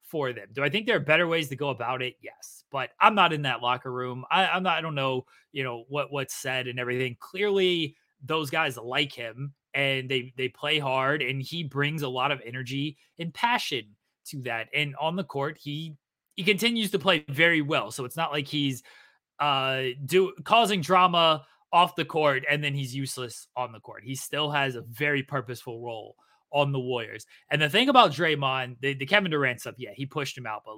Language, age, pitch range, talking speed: English, 20-39, 125-160 Hz, 215 wpm